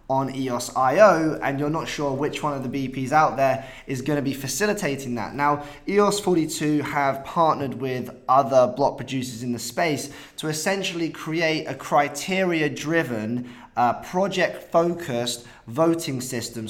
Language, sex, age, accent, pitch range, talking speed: English, male, 20-39, British, 130-155 Hz, 145 wpm